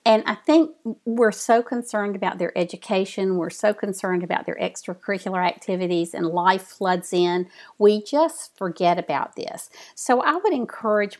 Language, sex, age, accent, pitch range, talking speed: English, female, 50-69, American, 180-230 Hz, 155 wpm